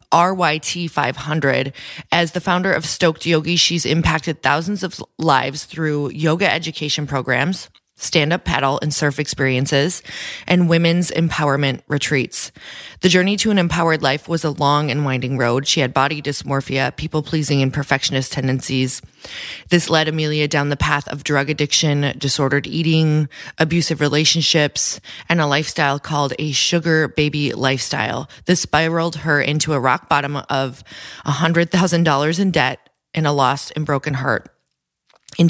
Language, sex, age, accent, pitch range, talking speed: English, female, 20-39, American, 140-170 Hz, 145 wpm